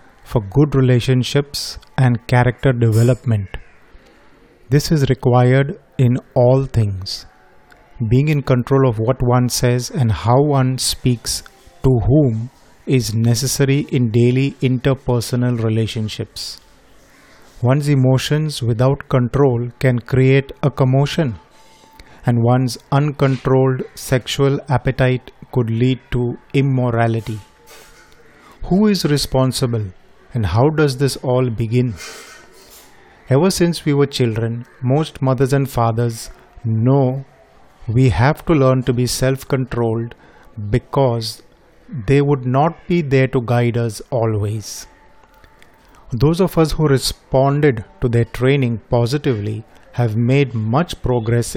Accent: native